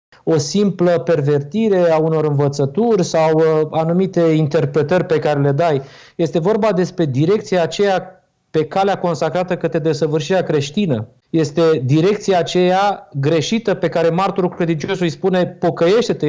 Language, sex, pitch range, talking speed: Romanian, male, 155-190 Hz, 135 wpm